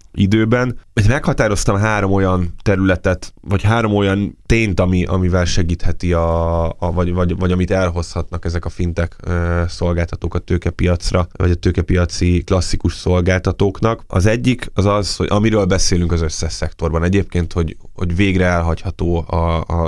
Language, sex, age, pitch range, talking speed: Hungarian, male, 20-39, 85-100 Hz, 145 wpm